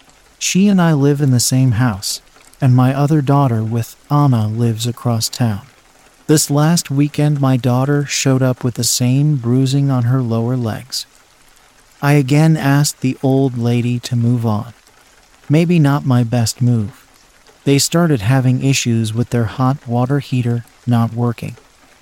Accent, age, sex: American, 40-59, male